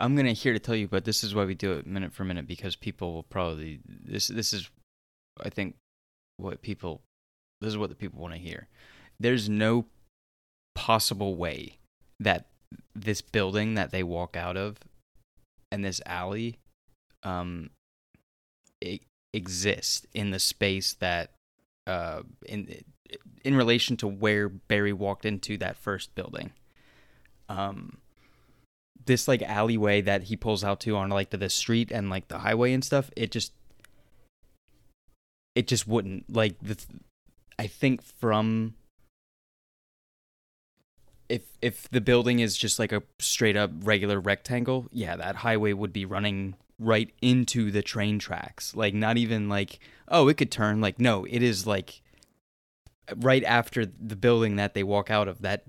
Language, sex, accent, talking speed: English, male, American, 155 wpm